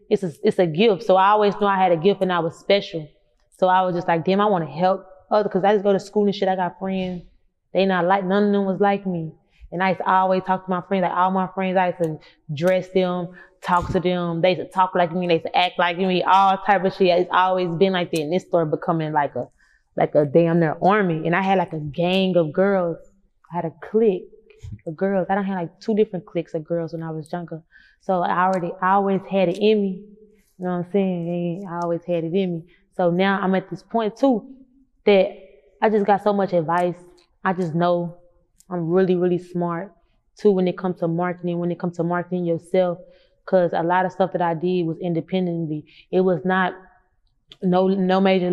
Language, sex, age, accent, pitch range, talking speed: English, female, 20-39, American, 175-190 Hz, 240 wpm